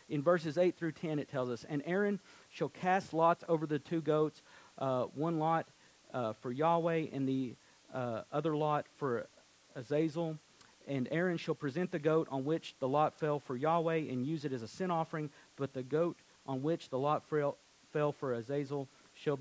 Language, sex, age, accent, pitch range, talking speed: English, male, 40-59, American, 125-160 Hz, 190 wpm